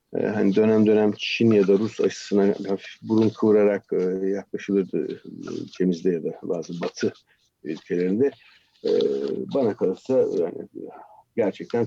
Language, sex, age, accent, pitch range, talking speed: Turkish, male, 50-69, native, 95-120 Hz, 105 wpm